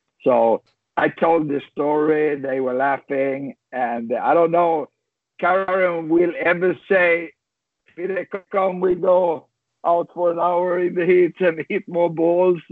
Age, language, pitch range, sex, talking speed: 60-79, English, 145-185 Hz, male, 145 wpm